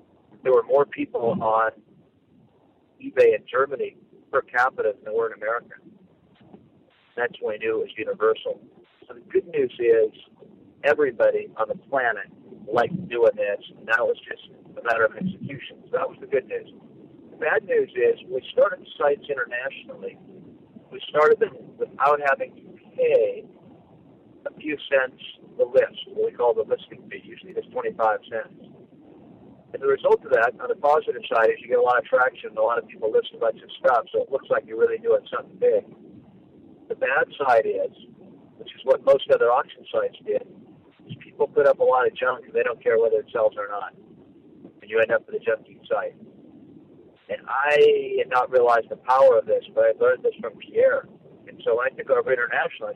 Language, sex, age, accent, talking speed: English, male, 50-69, American, 195 wpm